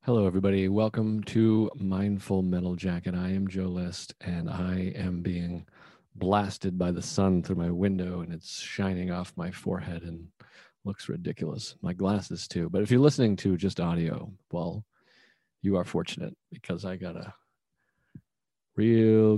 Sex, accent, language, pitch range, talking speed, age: male, American, English, 90-105 Hz, 160 wpm, 40-59